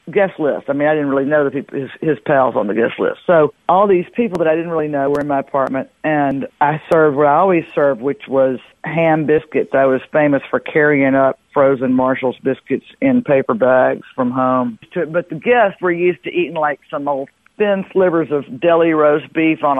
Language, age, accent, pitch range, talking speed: English, 50-69, American, 140-170 Hz, 220 wpm